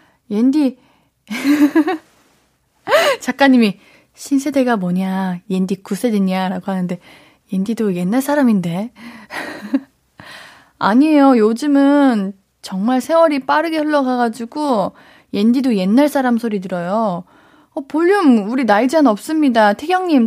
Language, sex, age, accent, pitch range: Korean, female, 20-39, native, 205-285 Hz